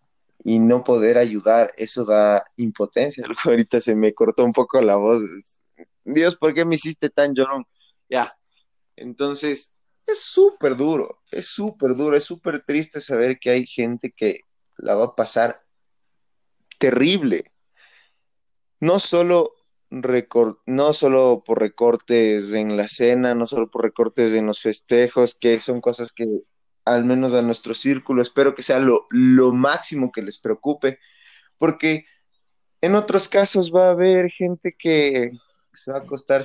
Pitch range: 115-145 Hz